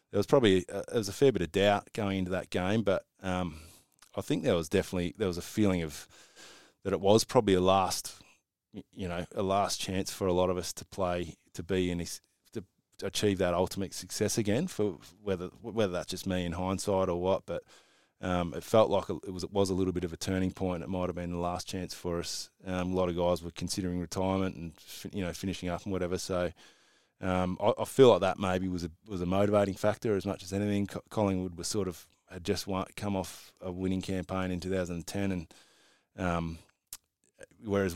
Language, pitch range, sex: English, 90-100 Hz, male